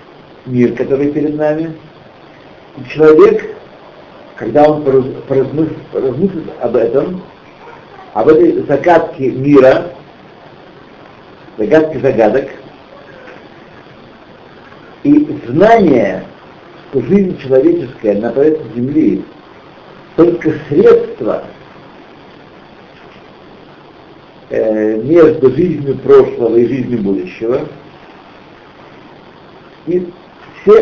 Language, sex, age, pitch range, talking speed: Russian, male, 60-79, 135-195 Hz, 70 wpm